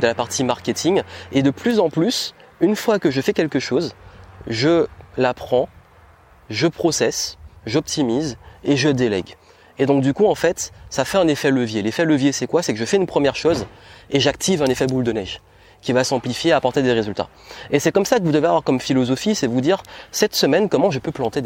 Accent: French